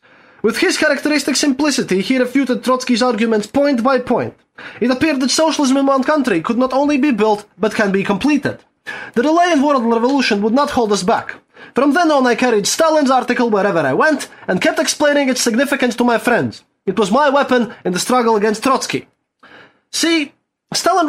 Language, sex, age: English, male, 20-39